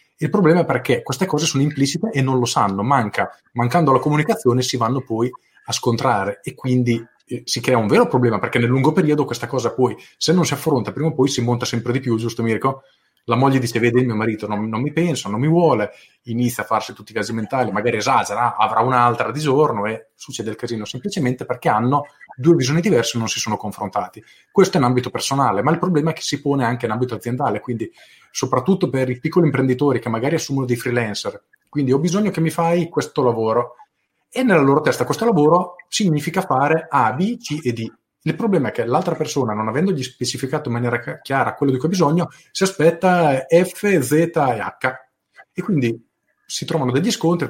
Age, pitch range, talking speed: 30-49, 120-155 Hz, 215 wpm